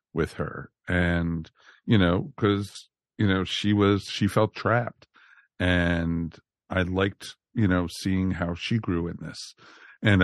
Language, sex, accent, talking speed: English, male, American, 145 wpm